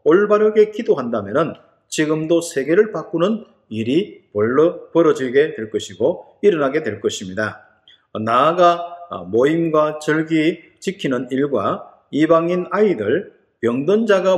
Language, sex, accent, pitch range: Korean, male, native, 145-215 Hz